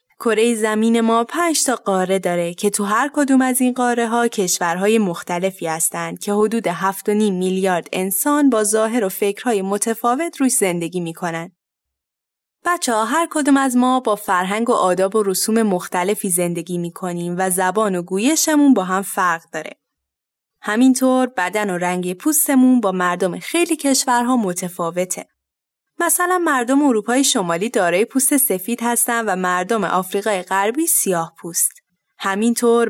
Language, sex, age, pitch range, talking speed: Persian, female, 10-29, 185-255 Hz, 150 wpm